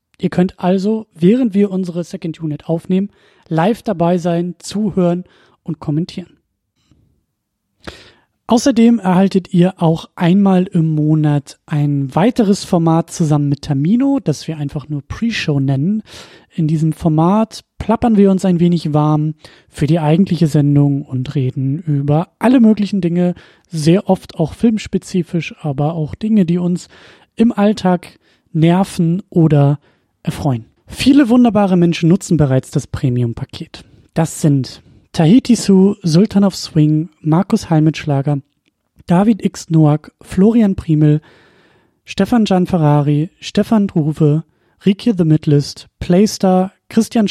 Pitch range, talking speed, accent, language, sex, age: 155-200 Hz, 125 wpm, German, German, male, 30-49